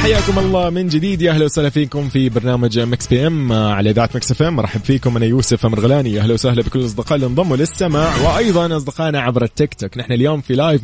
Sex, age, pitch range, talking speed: male, 20-39, 110-150 Hz, 210 wpm